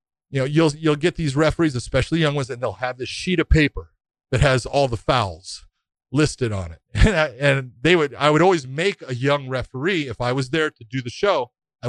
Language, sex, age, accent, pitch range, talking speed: English, male, 40-59, American, 120-160 Hz, 230 wpm